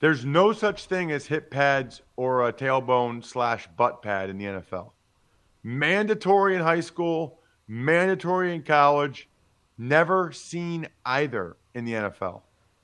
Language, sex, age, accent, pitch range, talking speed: English, male, 40-59, American, 115-160 Hz, 135 wpm